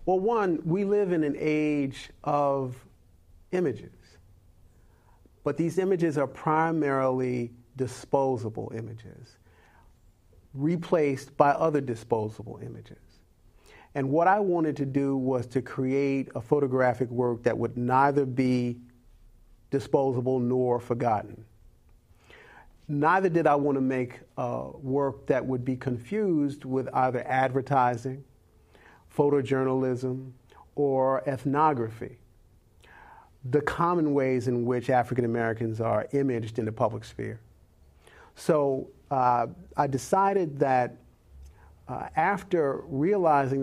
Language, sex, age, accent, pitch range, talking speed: English, male, 40-59, American, 115-145 Hz, 105 wpm